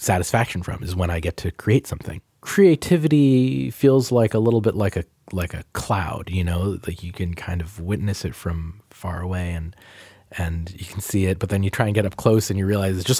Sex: male